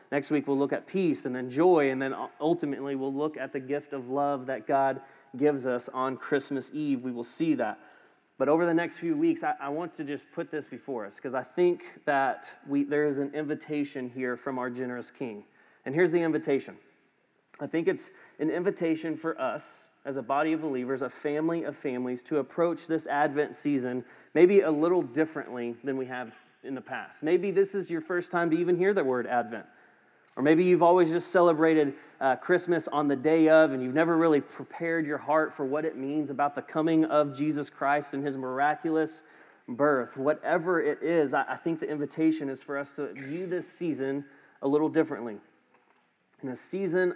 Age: 30-49